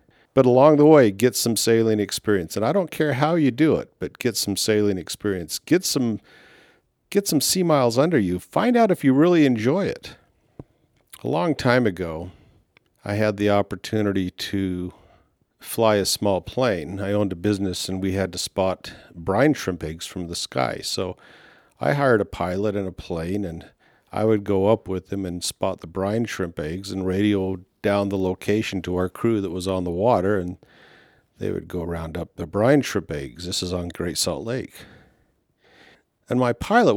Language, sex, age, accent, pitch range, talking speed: English, male, 50-69, American, 95-120 Hz, 190 wpm